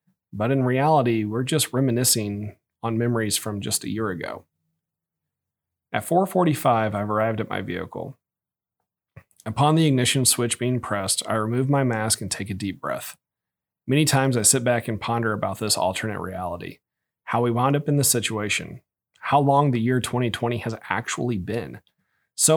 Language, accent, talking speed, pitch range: English, American, 165 wpm, 110-130 Hz